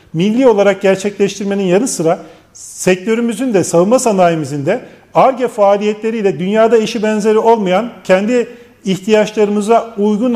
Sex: male